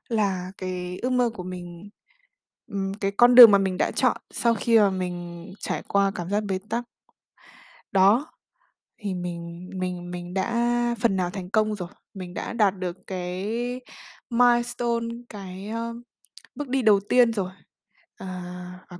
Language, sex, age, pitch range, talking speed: Vietnamese, female, 20-39, 185-235 Hz, 150 wpm